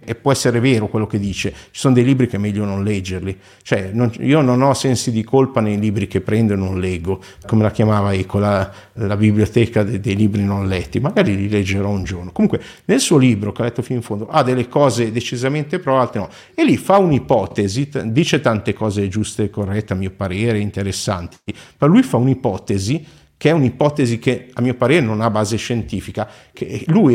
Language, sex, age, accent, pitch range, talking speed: Italian, male, 50-69, native, 105-140 Hz, 210 wpm